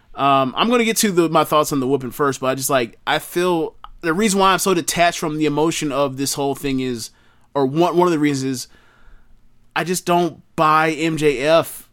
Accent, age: American, 30-49